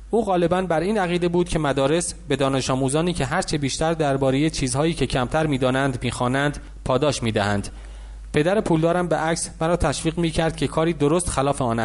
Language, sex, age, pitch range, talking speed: English, male, 30-49, 130-175 Hz, 170 wpm